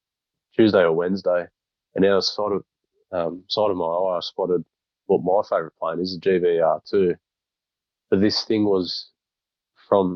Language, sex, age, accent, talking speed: English, male, 20-39, Australian, 155 wpm